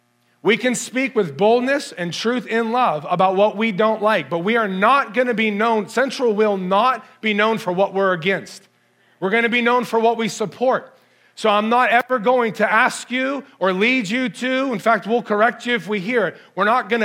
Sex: male